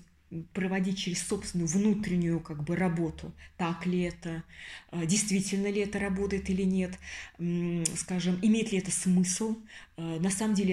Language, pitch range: Russian, 170-215 Hz